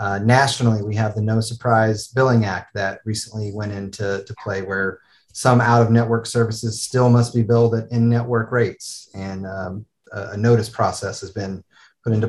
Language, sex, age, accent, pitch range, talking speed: English, male, 30-49, American, 105-125 Hz, 175 wpm